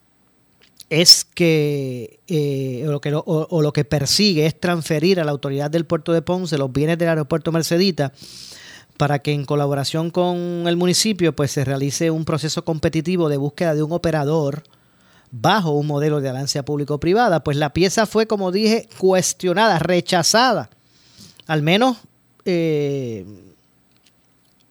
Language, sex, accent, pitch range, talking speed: Spanish, male, American, 140-175 Hz, 145 wpm